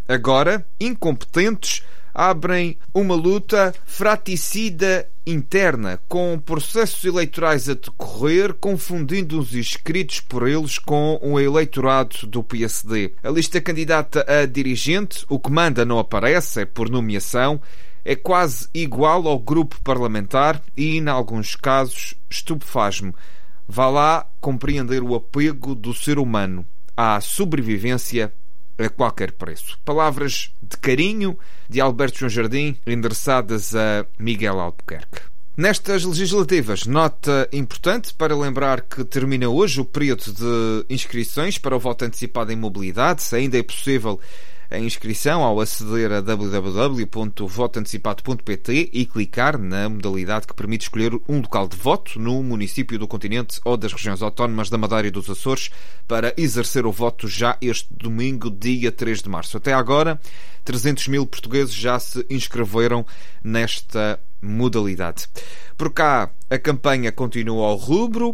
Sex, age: male, 30-49